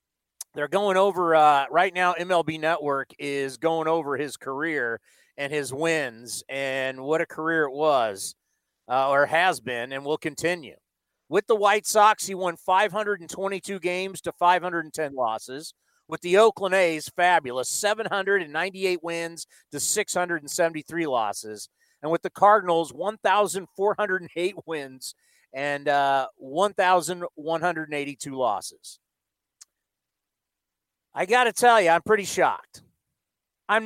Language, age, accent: English, 40-59, American